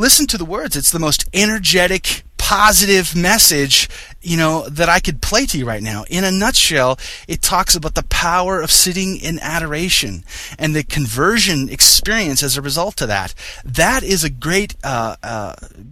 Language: English